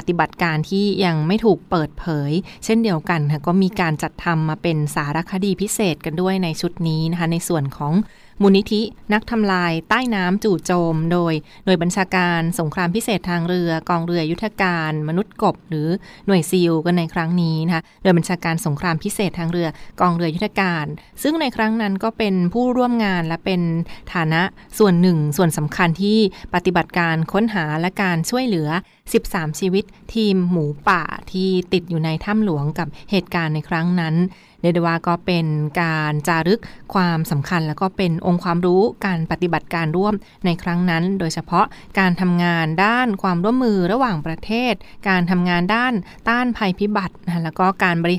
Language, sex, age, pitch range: Thai, female, 20-39, 165-200 Hz